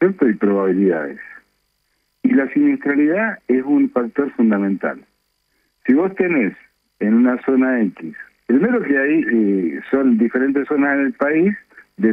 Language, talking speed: Spanish, 135 wpm